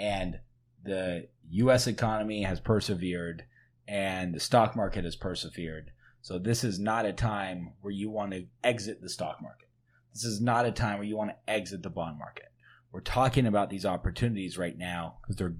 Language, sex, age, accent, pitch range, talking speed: English, male, 30-49, American, 95-125 Hz, 185 wpm